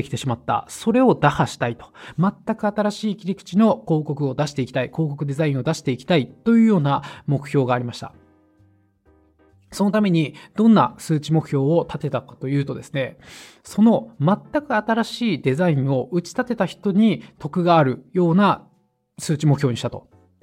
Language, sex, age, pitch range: Japanese, male, 20-39, 140-210 Hz